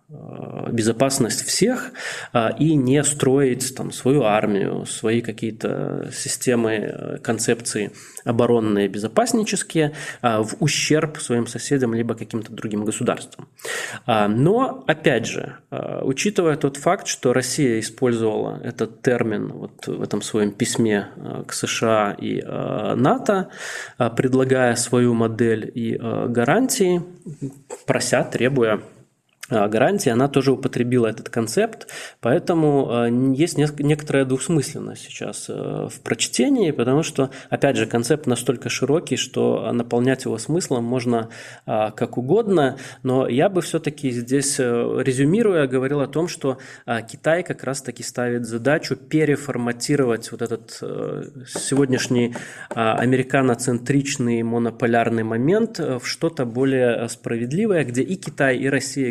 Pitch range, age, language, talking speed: 115-140 Hz, 20-39, Russian, 110 wpm